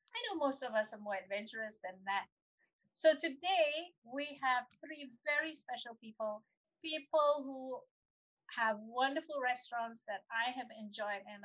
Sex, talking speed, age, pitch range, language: female, 145 wpm, 50-69, 220-290 Hz, English